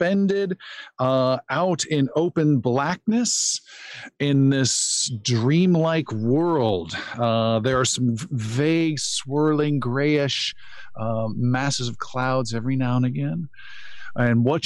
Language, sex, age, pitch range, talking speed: English, male, 40-59, 115-150 Hz, 105 wpm